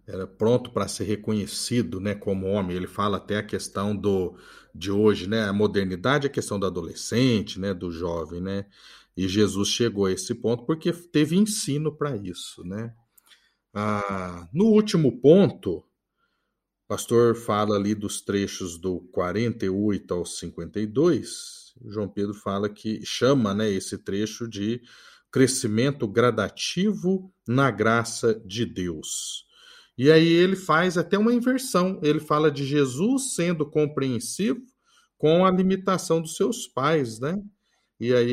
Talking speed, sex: 140 wpm, male